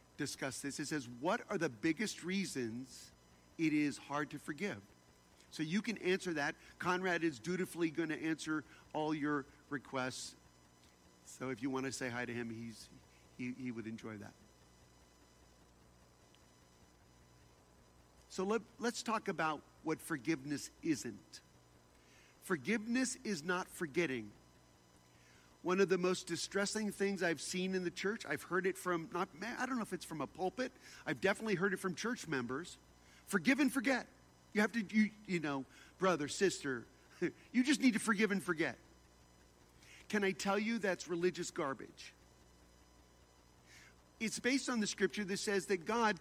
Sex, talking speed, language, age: male, 155 wpm, English, 50-69